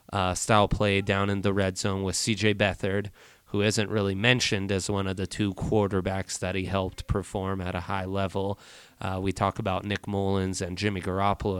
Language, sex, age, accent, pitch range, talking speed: English, male, 20-39, American, 100-120 Hz, 195 wpm